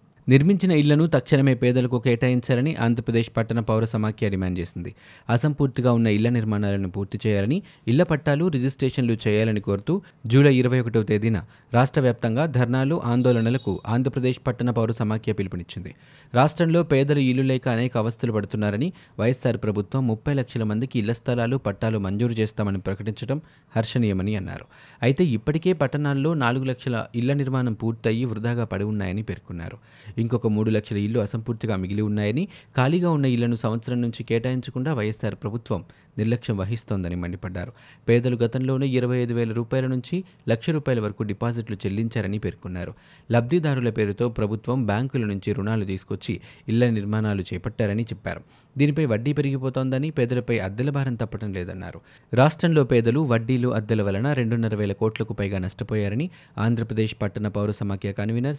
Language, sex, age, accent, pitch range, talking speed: Telugu, male, 30-49, native, 105-130 Hz, 130 wpm